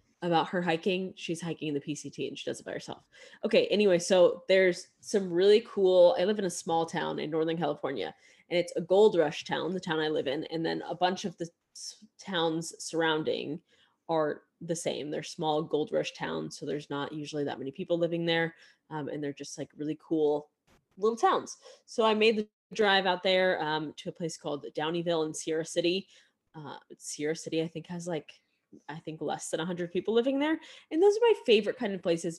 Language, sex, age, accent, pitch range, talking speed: English, female, 20-39, American, 160-200 Hz, 215 wpm